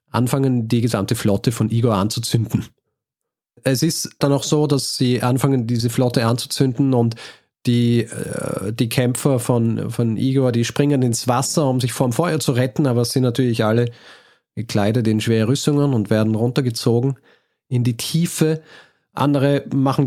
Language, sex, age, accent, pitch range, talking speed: German, male, 40-59, German, 115-140 Hz, 160 wpm